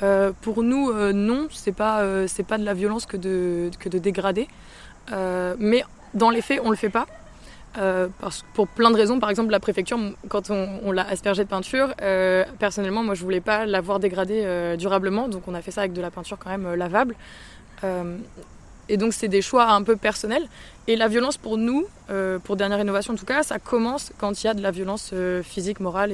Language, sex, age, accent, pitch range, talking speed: French, female, 20-39, French, 195-230 Hz, 230 wpm